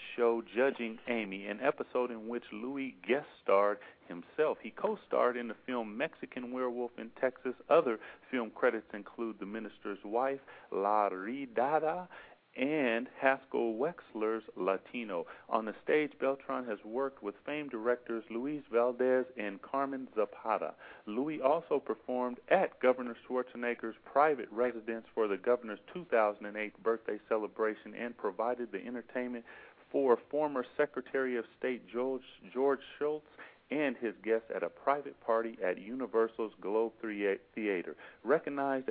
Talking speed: 135 wpm